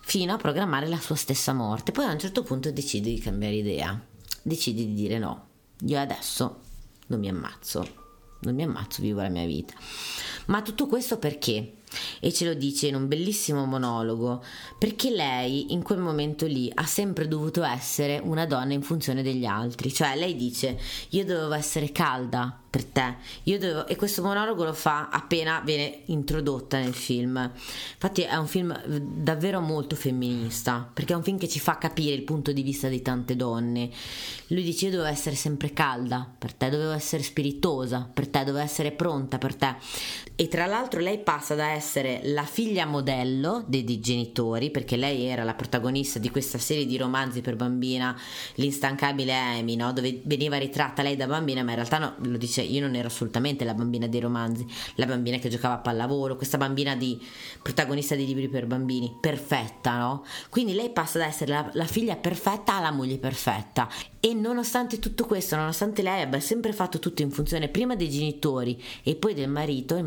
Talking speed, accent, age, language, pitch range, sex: 185 wpm, native, 30-49, Italian, 125-160 Hz, female